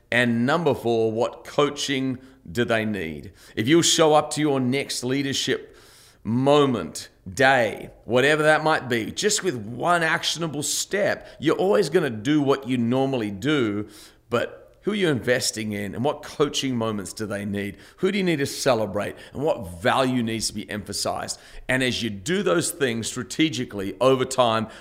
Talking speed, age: 170 wpm, 40-59